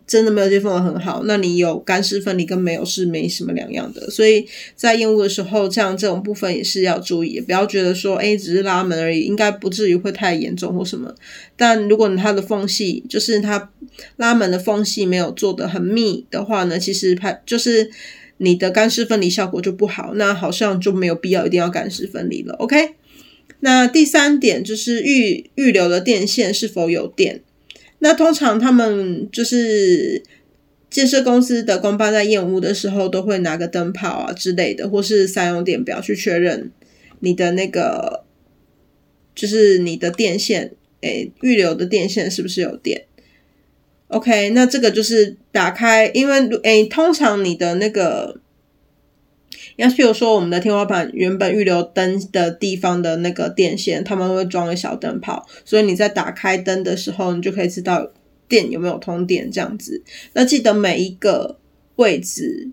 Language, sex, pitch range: Chinese, female, 185-225 Hz